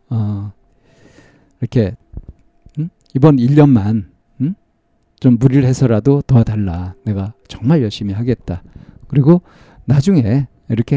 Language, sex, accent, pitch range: Korean, male, native, 110-145 Hz